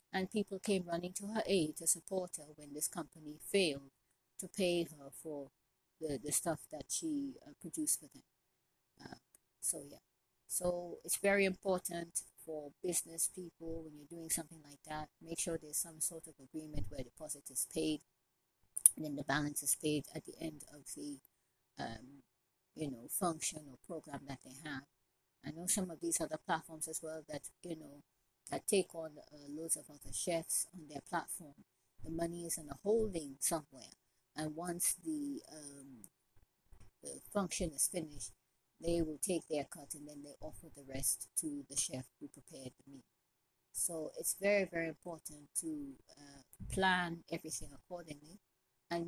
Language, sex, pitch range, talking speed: English, female, 145-175 Hz, 170 wpm